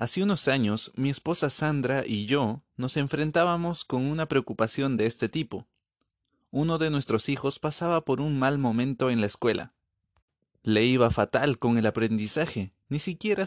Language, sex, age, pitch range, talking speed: Spanish, male, 30-49, 110-150 Hz, 160 wpm